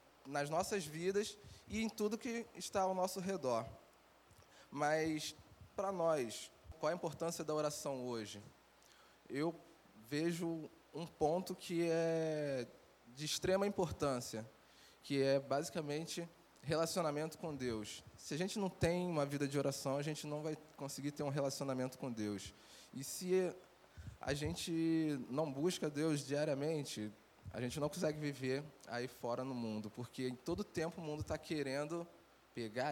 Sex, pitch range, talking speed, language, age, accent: male, 130-165 Hz, 145 wpm, Portuguese, 20-39, Brazilian